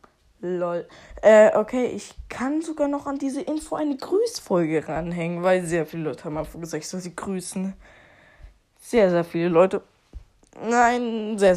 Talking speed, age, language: 155 wpm, 20-39, German